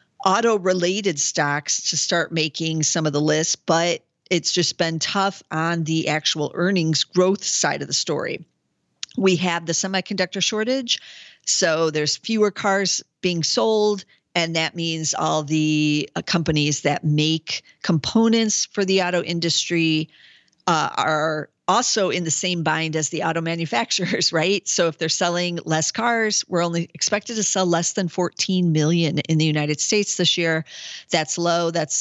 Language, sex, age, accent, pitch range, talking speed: English, female, 50-69, American, 155-190 Hz, 155 wpm